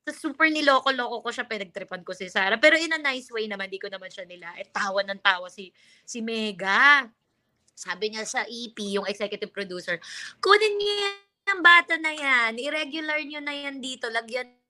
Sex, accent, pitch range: female, native, 195-250 Hz